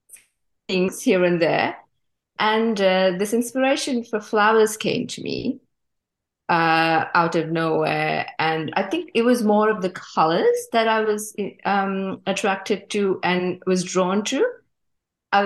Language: English